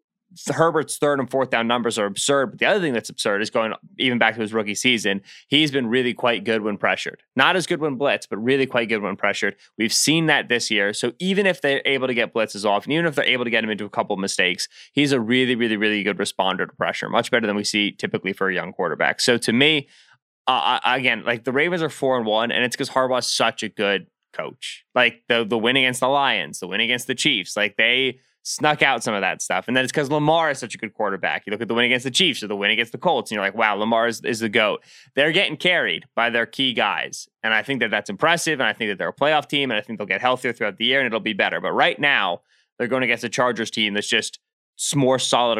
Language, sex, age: English, male, 20-39